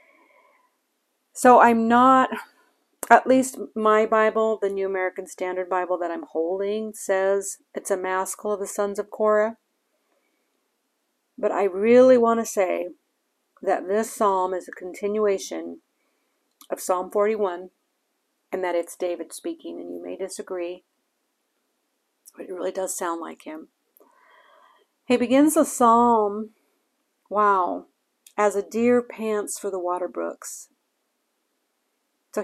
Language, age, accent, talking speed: English, 50-69, American, 130 wpm